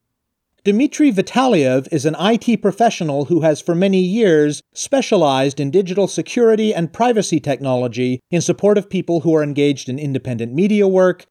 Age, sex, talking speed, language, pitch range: 40-59, male, 155 wpm, English, 145-195 Hz